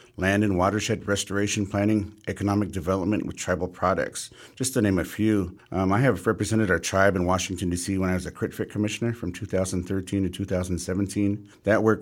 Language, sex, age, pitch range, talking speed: English, male, 50-69, 90-105 Hz, 185 wpm